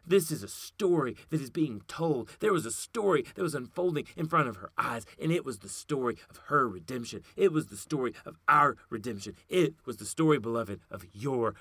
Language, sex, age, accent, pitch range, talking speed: English, male, 30-49, American, 150-195 Hz, 215 wpm